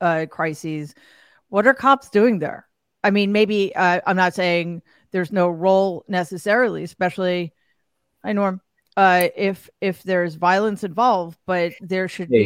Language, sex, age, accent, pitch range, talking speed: English, female, 40-59, American, 175-225 Hz, 150 wpm